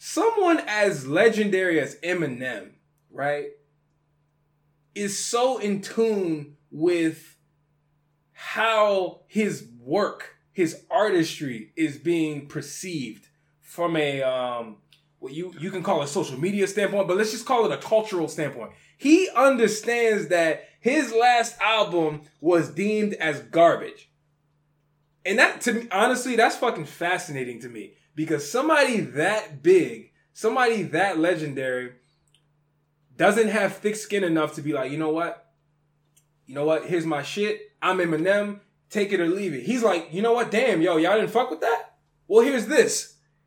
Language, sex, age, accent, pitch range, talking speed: English, male, 20-39, American, 150-210 Hz, 145 wpm